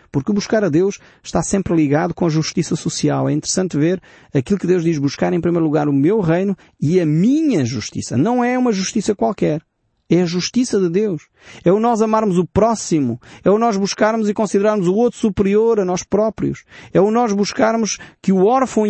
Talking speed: 205 wpm